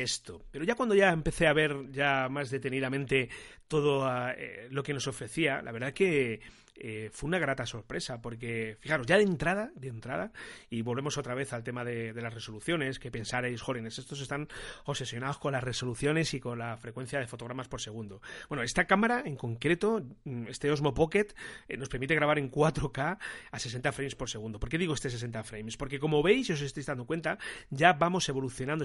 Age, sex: 30-49, male